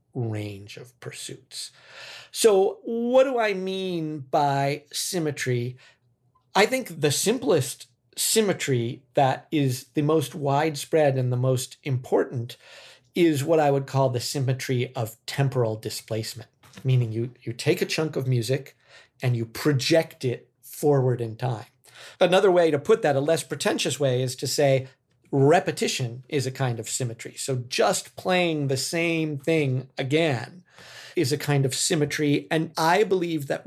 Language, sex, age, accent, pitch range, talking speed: English, male, 50-69, American, 125-155 Hz, 150 wpm